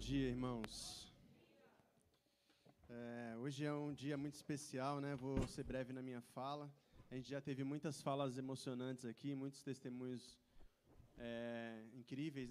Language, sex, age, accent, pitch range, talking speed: Portuguese, male, 20-39, Brazilian, 130-150 Hz, 130 wpm